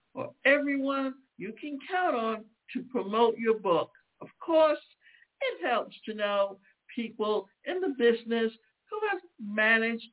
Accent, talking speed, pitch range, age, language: American, 135 wpm, 225-300 Hz, 60-79, English